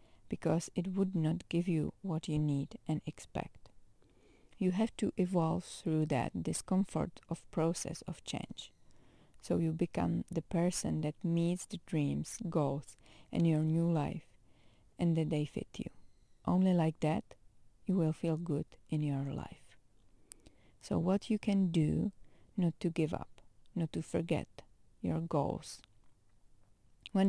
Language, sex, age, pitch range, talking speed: English, female, 40-59, 150-185 Hz, 145 wpm